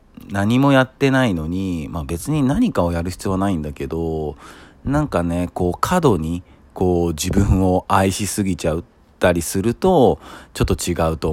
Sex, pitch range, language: male, 80-100 Hz, Japanese